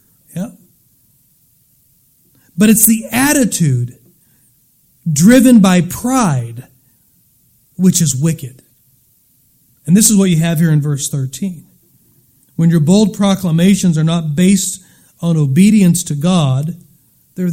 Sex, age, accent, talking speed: male, 40-59, American, 115 wpm